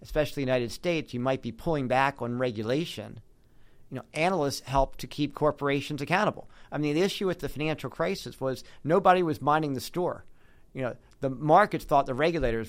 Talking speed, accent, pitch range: 195 wpm, American, 120-150 Hz